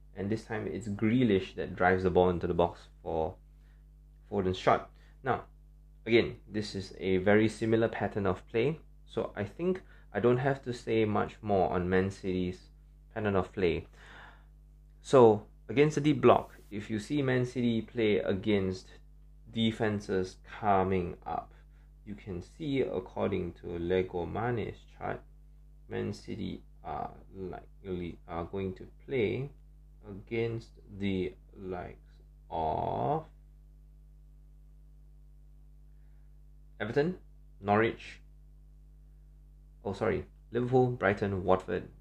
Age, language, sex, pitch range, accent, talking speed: 20-39, English, male, 95-145 Hz, Malaysian, 115 wpm